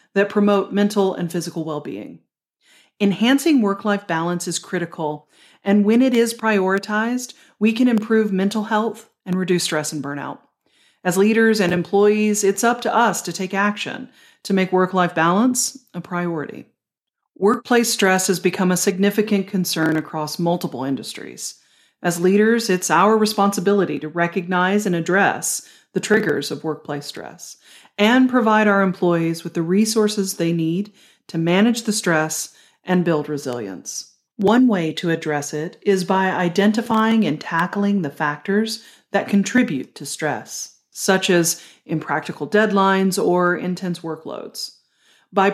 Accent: American